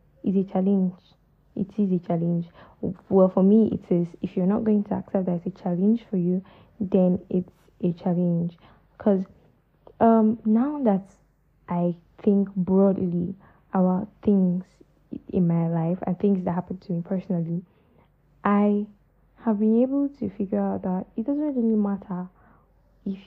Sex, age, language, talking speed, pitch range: female, 10-29, English, 150 wpm, 185-215 Hz